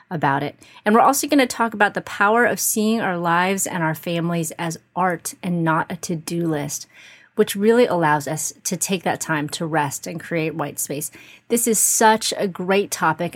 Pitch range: 165-210 Hz